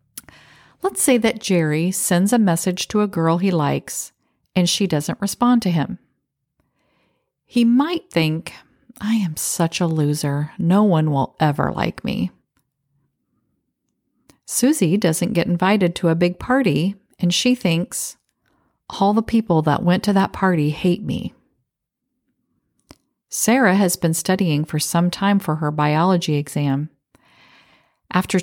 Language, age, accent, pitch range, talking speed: English, 40-59, American, 150-205 Hz, 135 wpm